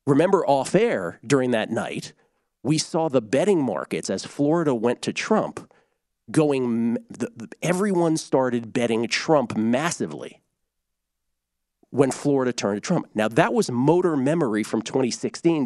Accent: American